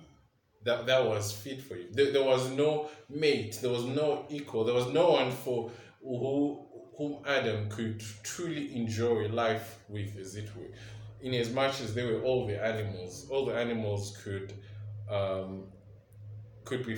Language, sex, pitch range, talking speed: English, male, 105-130 Hz, 165 wpm